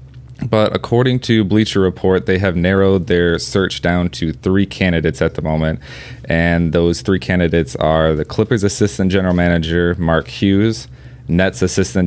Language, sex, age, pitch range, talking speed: English, male, 20-39, 80-95 Hz, 155 wpm